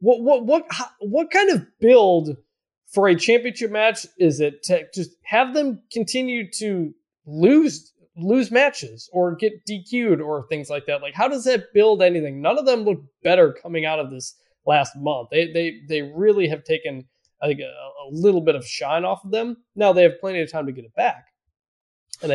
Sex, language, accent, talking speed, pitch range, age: male, English, American, 195 wpm, 150-205 Hz, 20-39